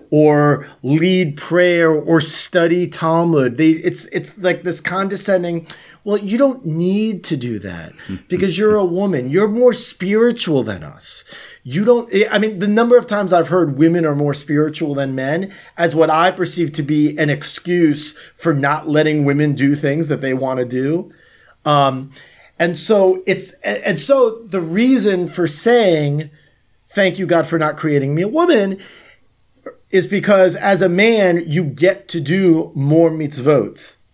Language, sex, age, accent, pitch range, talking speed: English, male, 30-49, American, 145-185 Hz, 165 wpm